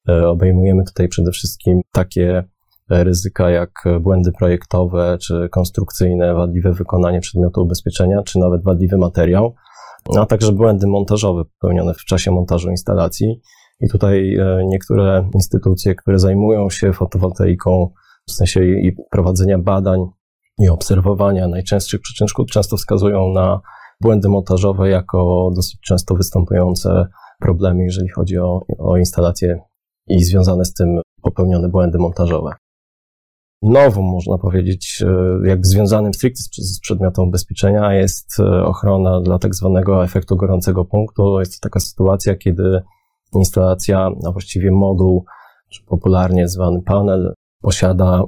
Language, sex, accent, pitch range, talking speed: Polish, male, native, 90-100 Hz, 120 wpm